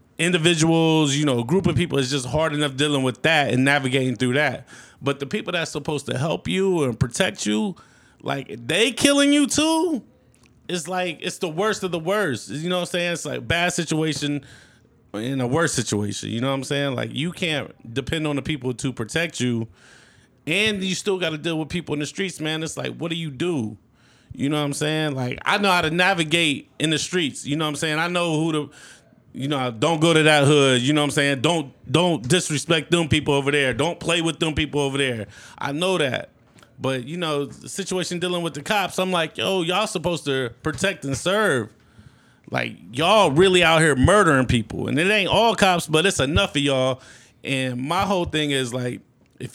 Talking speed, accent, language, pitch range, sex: 220 wpm, American, English, 130-175 Hz, male